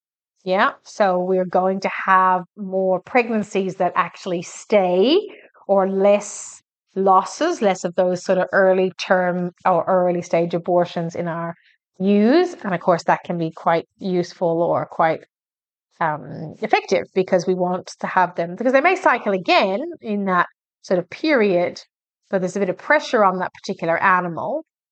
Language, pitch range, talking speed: English, 180-215 Hz, 160 wpm